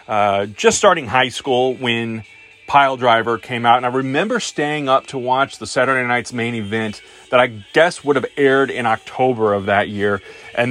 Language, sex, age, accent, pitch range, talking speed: English, male, 30-49, American, 105-125 Hz, 185 wpm